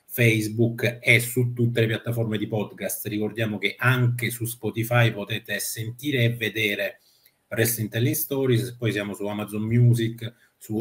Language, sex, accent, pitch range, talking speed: Italian, male, native, 115-130 Hz, 140 wpm